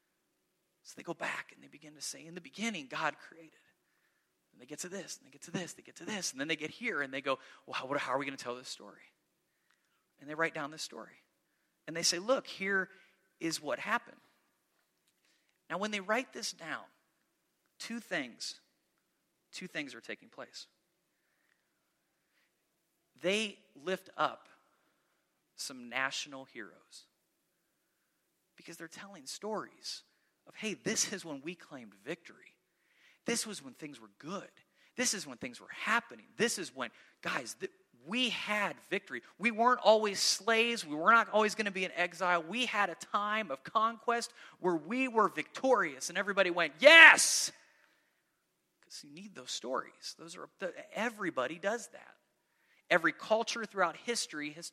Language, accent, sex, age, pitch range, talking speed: English, American, male, 30-49, 160-225 Hz, 170 wpm